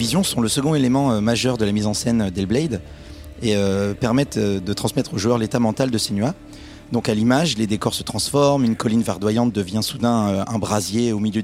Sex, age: male, 30-49